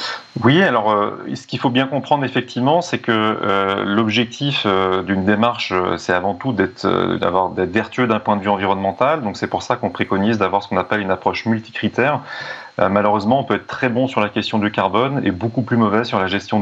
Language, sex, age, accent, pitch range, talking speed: French, male, 30-49, French, 100-120 Hz, 210 wpm